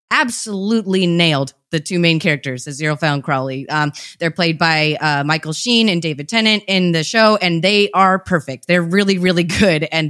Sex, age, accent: female, 20-39, American